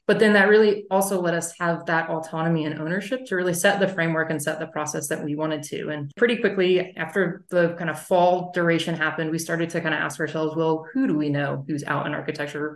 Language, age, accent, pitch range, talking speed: English, 20-39, American, 155-180 Hz, 240 wpm